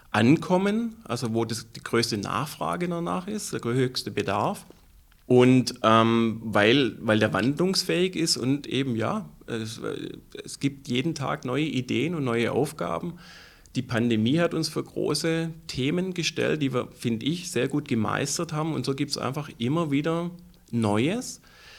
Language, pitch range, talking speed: German, 115-155 Hz, 155 wpm